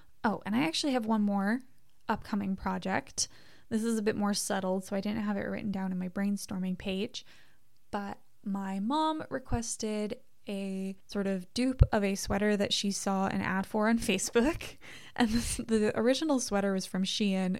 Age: 20-39